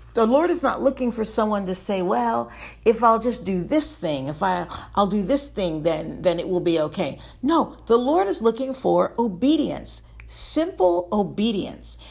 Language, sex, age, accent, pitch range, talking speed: English, female, 50-69, American, 185-280 Hz, 180 wpm